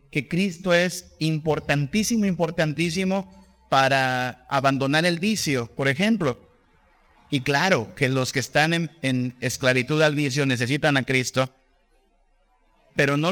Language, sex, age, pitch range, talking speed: Spanish, male, 50-69, 135-185 Hz, 120 wpm